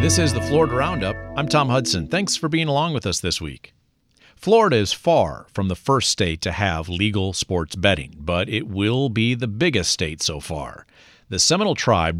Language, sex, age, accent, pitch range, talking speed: English, male, 50-69, American, 95-125 Hz, 195 wpm